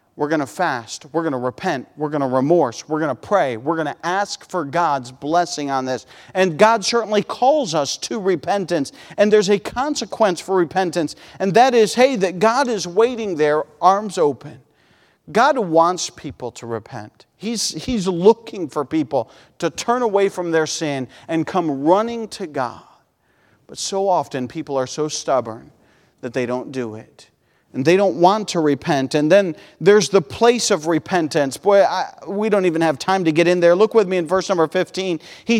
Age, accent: 40-59, American